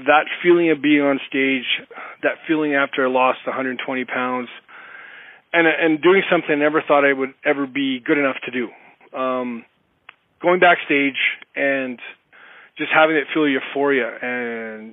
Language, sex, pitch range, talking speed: English, male, 135-165 Hz, 155 wpm